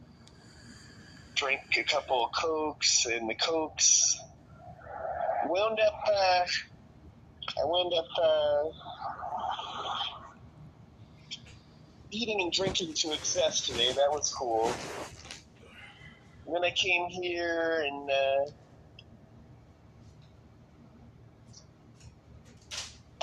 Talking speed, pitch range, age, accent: 80 wpm, 110-150 Hz, 30-49, American